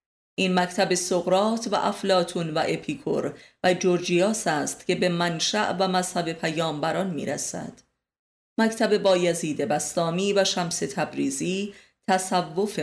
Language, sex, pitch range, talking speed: Persian, female, 160-195 Hz, 110 wpm